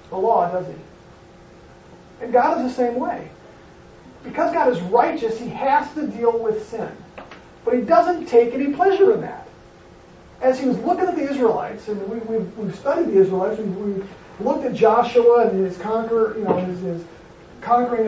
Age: 40-59